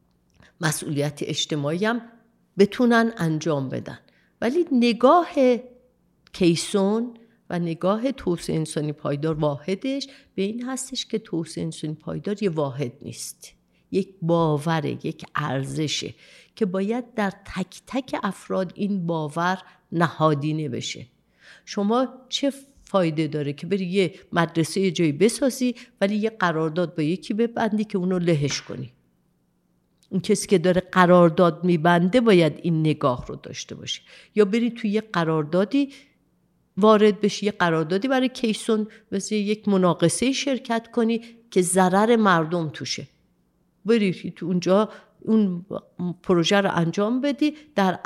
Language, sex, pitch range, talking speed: Persian, female, 165-230 Hz, 125 wpm